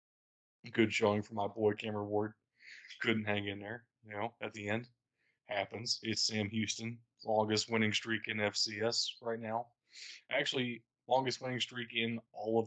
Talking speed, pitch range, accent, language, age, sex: 160 wpm, 105-120 Hz, American, English, 20-39, male